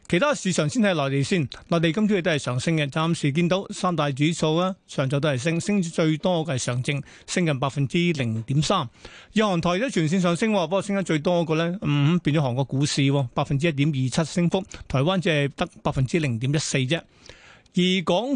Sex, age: male, 30-49